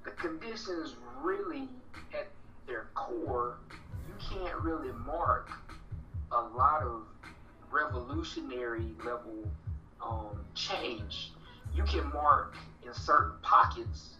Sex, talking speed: male, 95 wpm